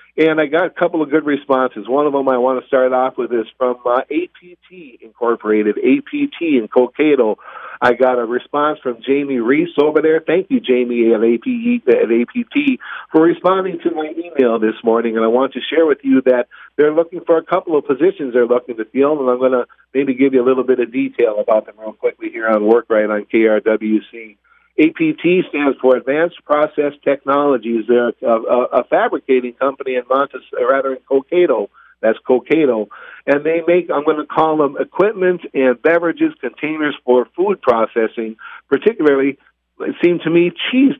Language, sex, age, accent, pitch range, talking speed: English, male, 50-69, American, 125-165 Hz, 185 wpm